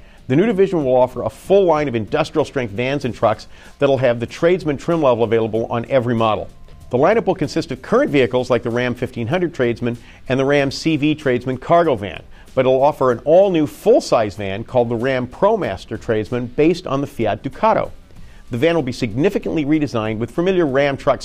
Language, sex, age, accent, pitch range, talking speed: English, male, 50-69, American, 110-150 Hz, 200 wpm